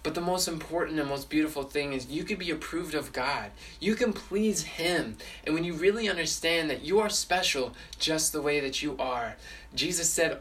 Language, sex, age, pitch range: English, male, 20-39, 140-170 Hz